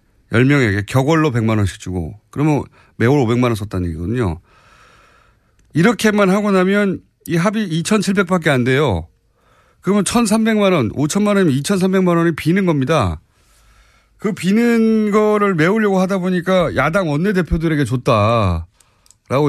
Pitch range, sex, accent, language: 115-175 Hz, male, native, Korean